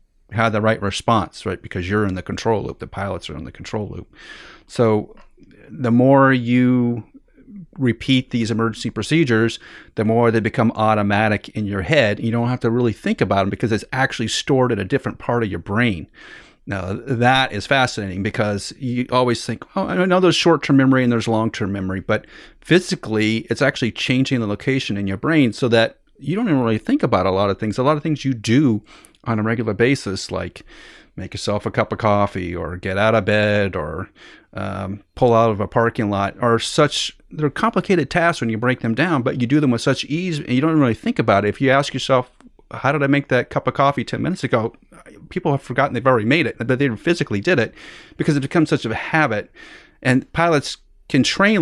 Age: 30-49